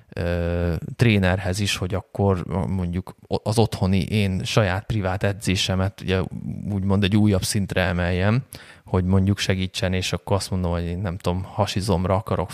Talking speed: 145 wpm